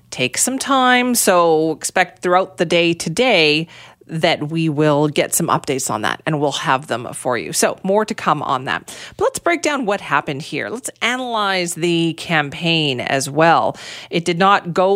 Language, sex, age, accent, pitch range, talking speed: English, female, 40-59, American, 160-235 Hz, 185 wpm